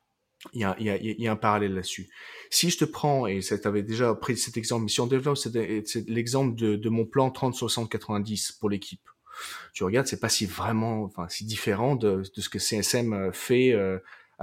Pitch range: 100-125 Hz